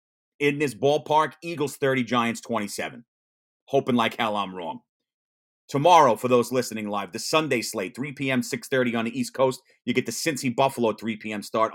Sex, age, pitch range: male, 30-49, 120-145 Hz